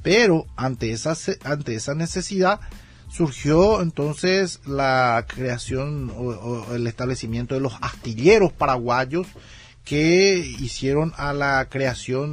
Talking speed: 110 wpm